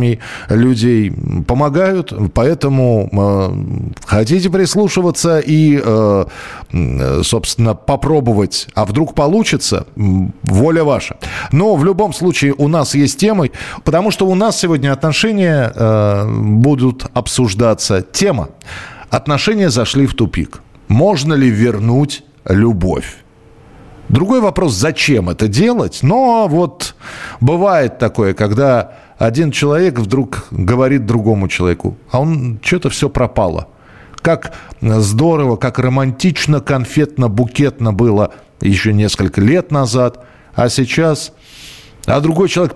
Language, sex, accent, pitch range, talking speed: Russian, male, native, 115-155 Hz, 110 wpm